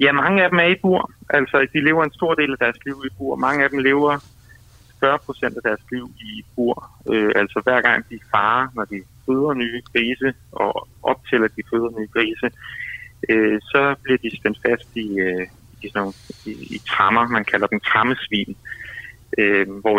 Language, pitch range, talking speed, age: Danish, 110-130 Hz, 190 wpm, 30-49